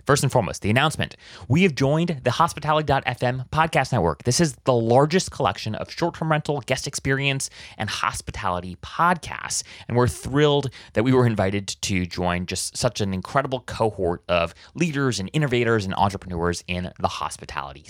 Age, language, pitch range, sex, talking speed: 30-49, English, 95-140 Hz, male, 160 wpm